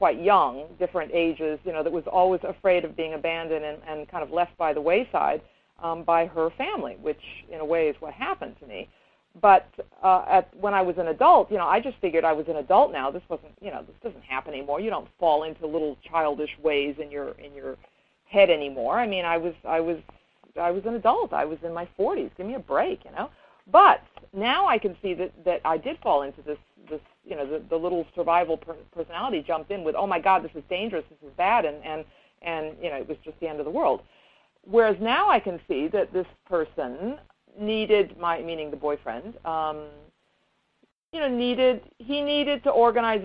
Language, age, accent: English, 50-69, American